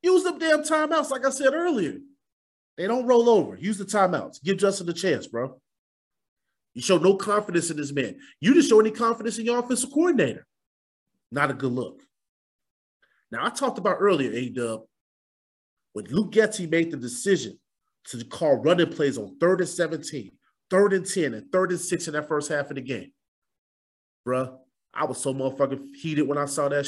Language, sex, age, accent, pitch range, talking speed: English, male, 30-49, American, 145-230 Hz, 190 wpm